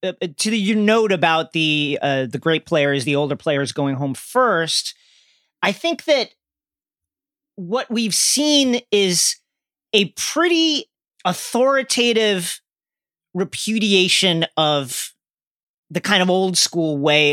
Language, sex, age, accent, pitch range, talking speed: English, male, 40-59, American, 165-235 Hz, 120 wpm